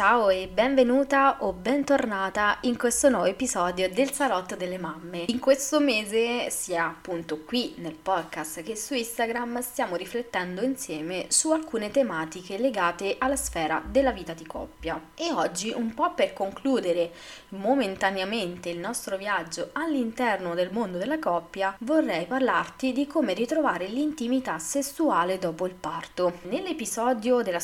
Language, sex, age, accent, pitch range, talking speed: Italian, female, 20-39, native, 175-260 Hz, 140 wpm